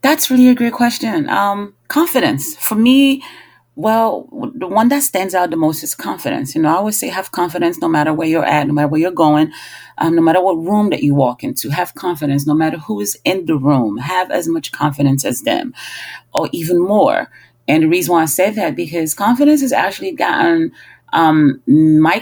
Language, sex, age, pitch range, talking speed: English, female, 30-49, 145-205 Hz, 210 wpm